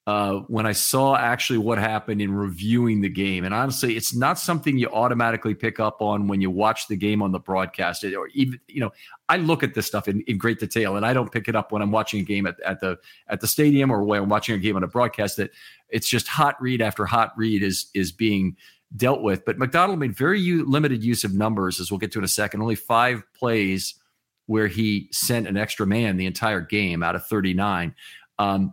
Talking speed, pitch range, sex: 240 wpm, 100-125 Hz, male